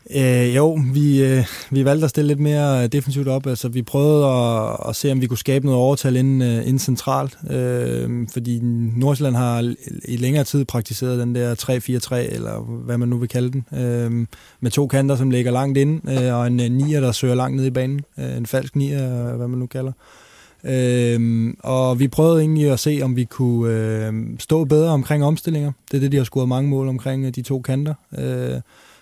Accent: native